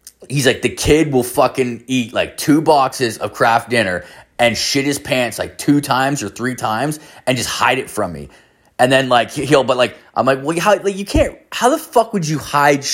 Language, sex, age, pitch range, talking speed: English, male, 20-39, 105-140 Hz, 220 wpm